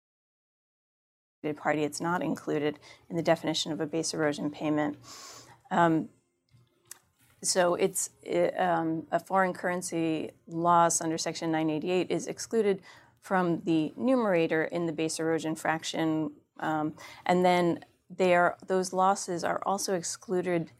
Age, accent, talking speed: 30-49, American, 125 wpm